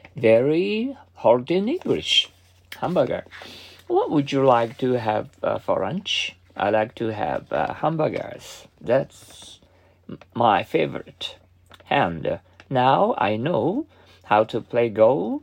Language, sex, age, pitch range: Japanese, male, 50-69, 95-145 Hz